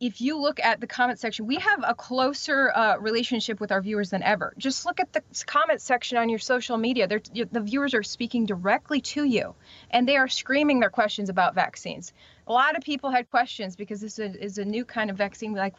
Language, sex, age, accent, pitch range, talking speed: English, female, 30-49, American, 185-235 Hz, 230 wpm